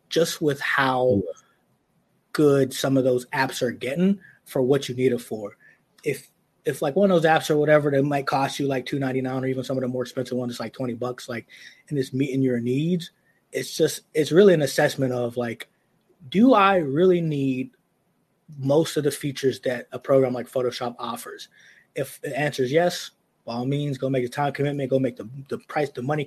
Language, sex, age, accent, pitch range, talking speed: English, male, 20-39, American, 125-145 Hz, 210 wpm